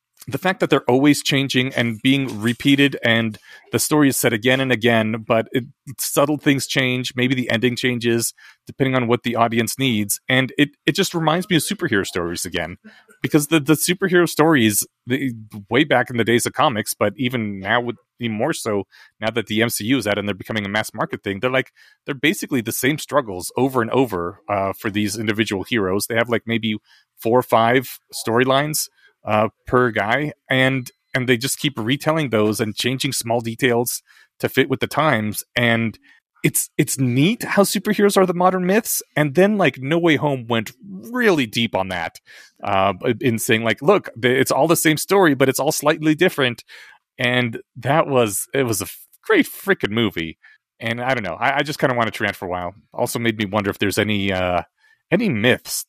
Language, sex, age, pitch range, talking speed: English, male, 30-49, 110-140 Hz, 200 wpm